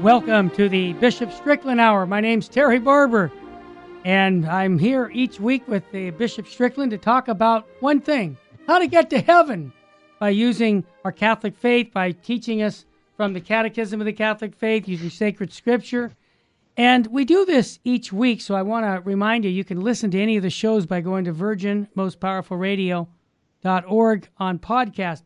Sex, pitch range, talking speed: male, 190-240 Hz, 175 wpm